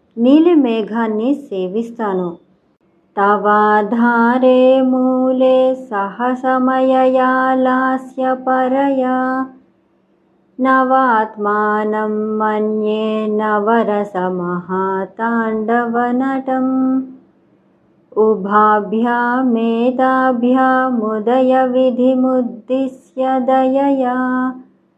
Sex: male